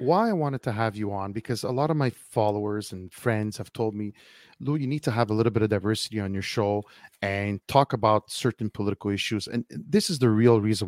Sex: male